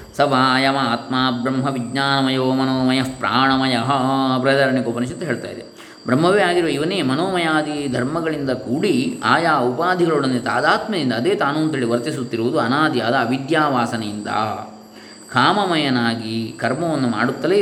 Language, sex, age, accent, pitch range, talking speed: Kannada, male, 20-39, native, 120-155 Hz, 95 wpm